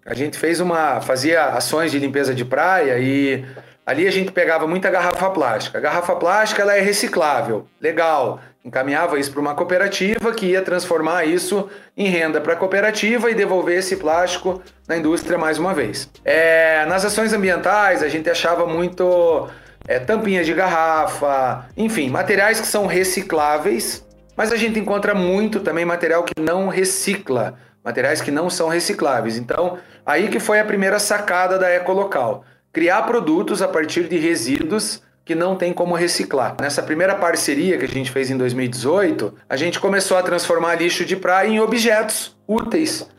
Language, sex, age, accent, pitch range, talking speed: Portuguese, male, 30-49, Brazilian, 160-205 Hz, 170 wpm